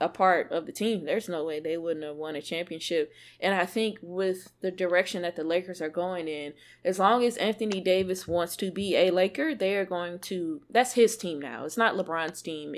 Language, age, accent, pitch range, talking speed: English, 20-39, American, 165-215 Hz, 225 wpm